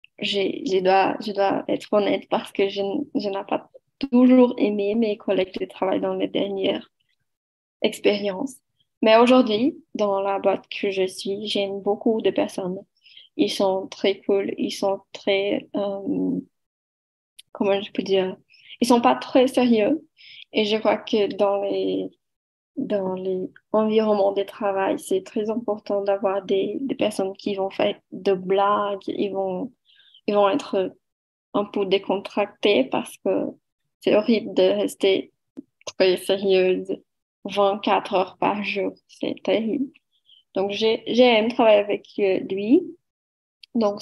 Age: 20-39